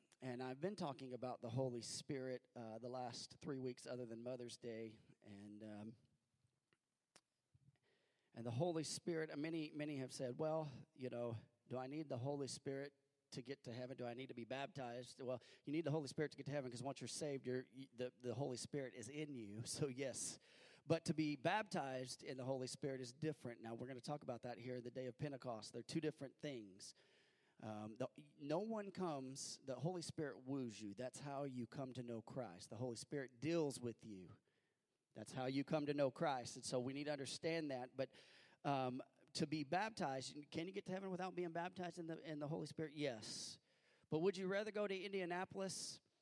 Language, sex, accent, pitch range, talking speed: English, male, American, 125-155 Hz, 210 wpm